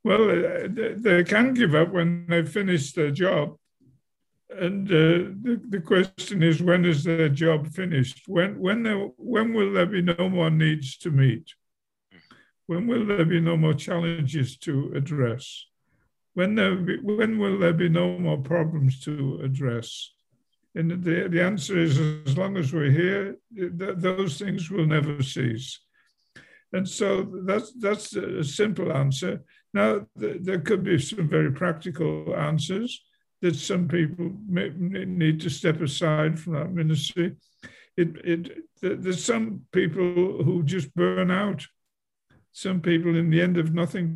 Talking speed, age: 140 wpm, 60-79